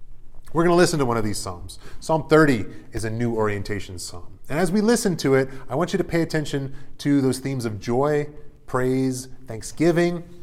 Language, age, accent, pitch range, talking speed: English, 30-49, American, 105-155 Hz, 200 wpm